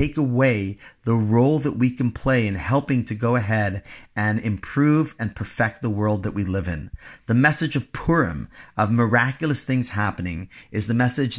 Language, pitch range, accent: English, 95-125 Hz, American